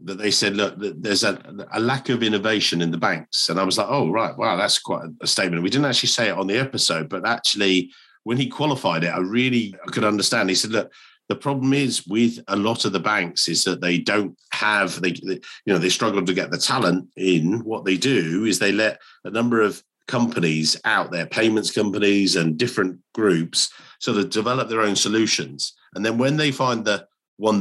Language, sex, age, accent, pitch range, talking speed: English, male, 50-69, British, 95-120 Hz, 215 wpm